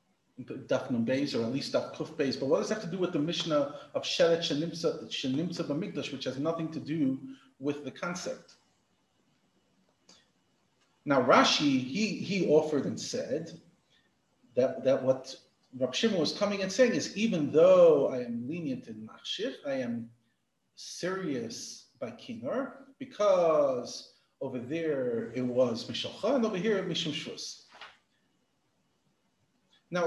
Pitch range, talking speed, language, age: 160-260 Hz, 130 wpm, English, 40-59